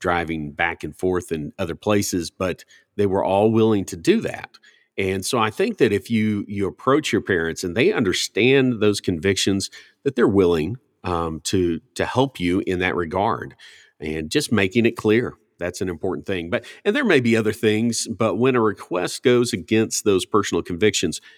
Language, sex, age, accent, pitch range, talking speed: English, male, 50-69, American, 85-115 Hz, 190 wpm